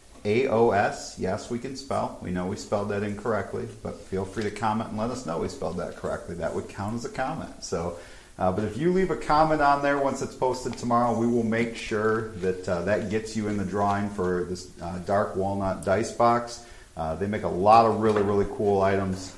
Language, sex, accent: English, male, American